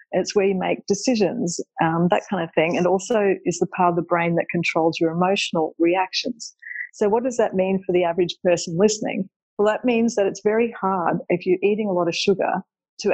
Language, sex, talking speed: English, female, 220 wpm